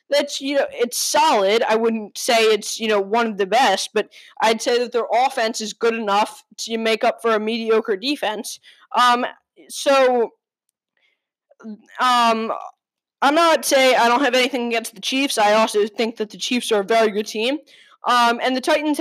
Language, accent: English, American